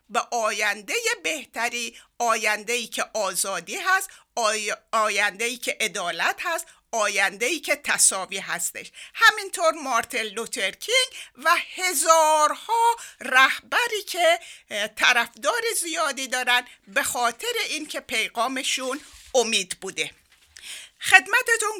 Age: 50-69